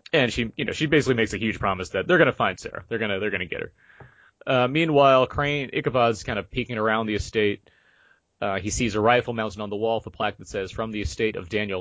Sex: male